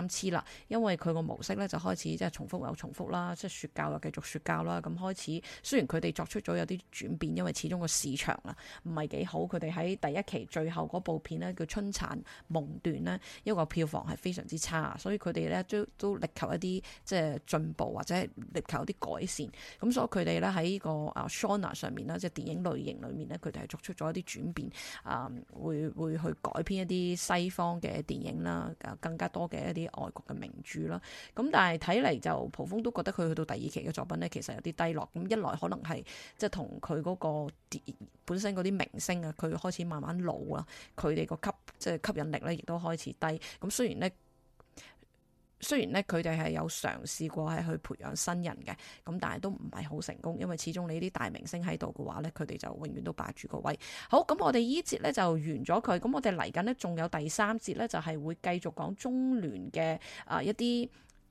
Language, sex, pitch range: English, female, 155-190 Hz